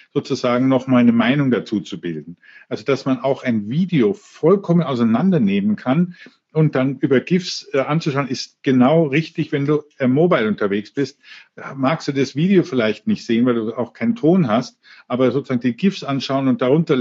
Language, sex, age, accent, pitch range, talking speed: German, male, 50-69, German, 125-170 Hz, 185 wpm